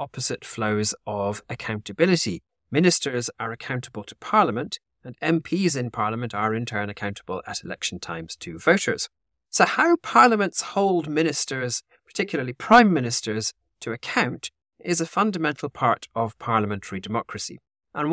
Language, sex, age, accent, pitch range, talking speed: English, male, 30-49, British, 105-150 Hz, 130 wpm